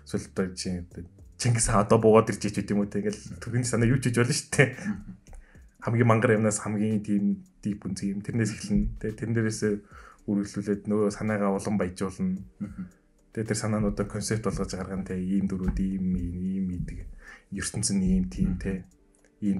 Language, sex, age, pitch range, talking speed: English, male, 20-39, 90-110 Hz, 100 wpm